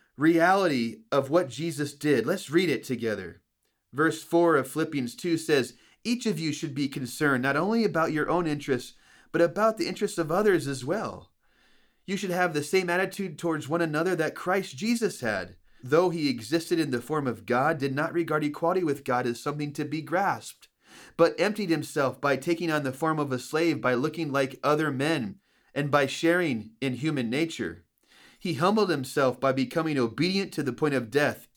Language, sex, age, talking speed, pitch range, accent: English, male, 30-49, 190 wpm, 135-170 Hz, American